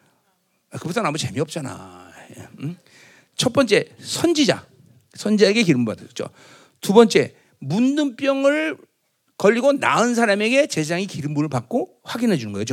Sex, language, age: male, Korean, 40-59